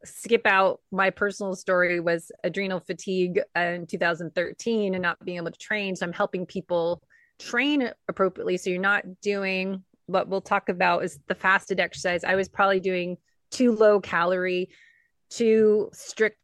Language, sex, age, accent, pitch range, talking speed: English, female, 30-49, American, 175-200 Hz, 155 wpm